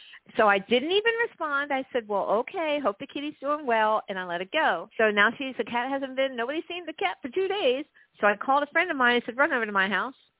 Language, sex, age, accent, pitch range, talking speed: English, female, 50-69, American, 205-260 Hz, 270 wpm